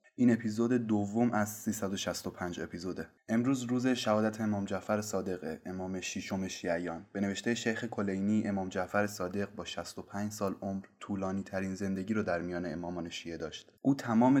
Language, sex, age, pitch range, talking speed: Persian, male, 20-39, 95-120 Hz, 150 wpm